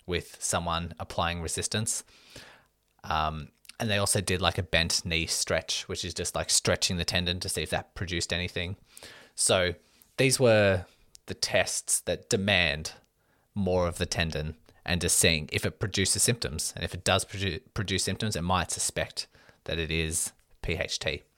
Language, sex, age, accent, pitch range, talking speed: English, male, 20-39, Australian, 85-100 Hz, 165 wpm